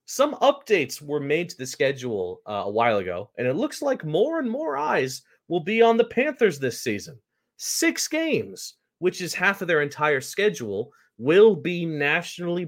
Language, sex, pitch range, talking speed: English, male, 125-175 Hz, 180 wpm